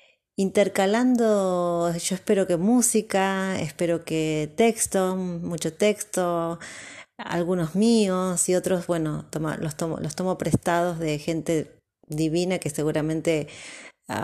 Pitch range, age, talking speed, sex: 165-205 Hz, 20-39, 100 wpm, female